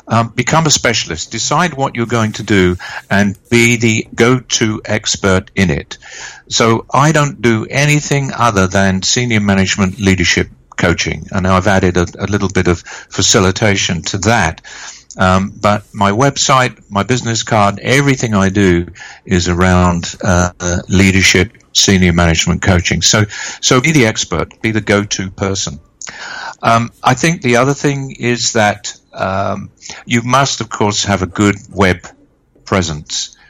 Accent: British